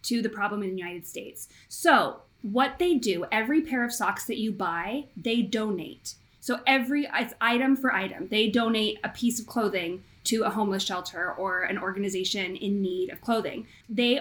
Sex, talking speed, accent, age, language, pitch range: female, 180 wpm, American, 20-39, English, 205-255 Hz